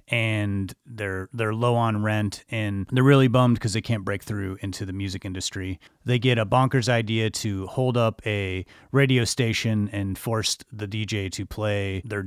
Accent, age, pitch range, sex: American, 30-49, 105-125 Hz, male